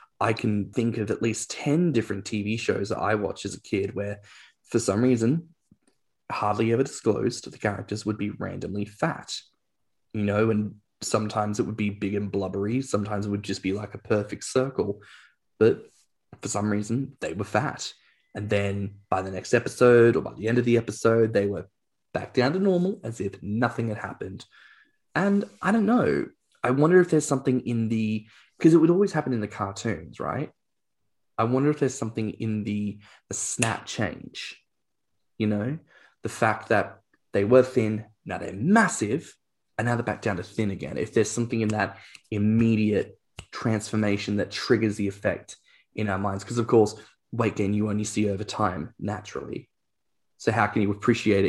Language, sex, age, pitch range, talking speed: English, male, 10-29, 100-120 Hz, 185 wpm